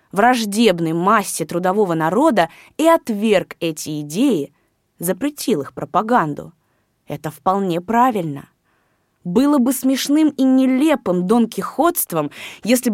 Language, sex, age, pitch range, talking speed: Russian, female, 20-39, 180-250 Hz, 95 wpm